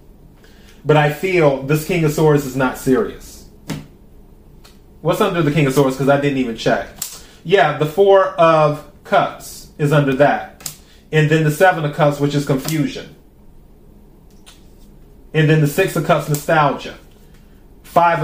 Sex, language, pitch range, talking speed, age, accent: male, English, 145-175 Hz, 150 wpm, 30-49, American